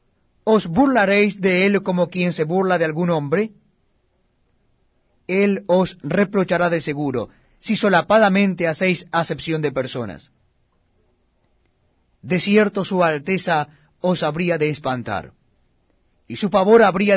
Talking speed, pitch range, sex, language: 120 wpm, 150-195 Hz, male, Spanish